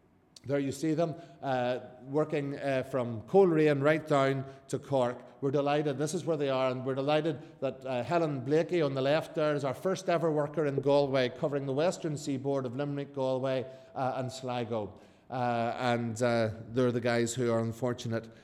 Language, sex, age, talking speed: English, male, 50-69, 185 wpm